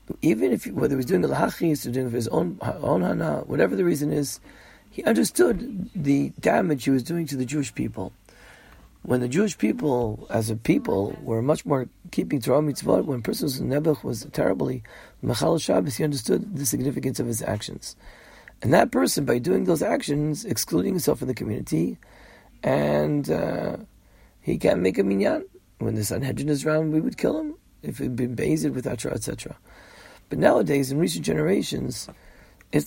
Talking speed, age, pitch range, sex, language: 180 wpm, 40-59, 125-165 Hz, male, English